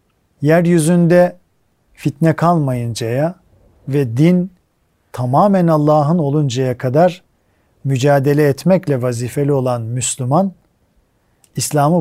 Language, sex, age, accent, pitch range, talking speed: Turkish, male, 50-69, native, 120-160 Hz, 75 wpm